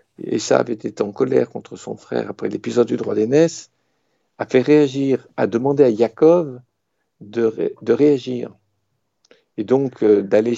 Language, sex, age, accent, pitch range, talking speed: French, male, 50-69, French, 110-135 Hz, 165 wpm